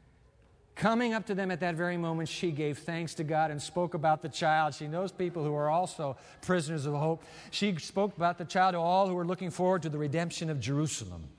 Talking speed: 225 wpm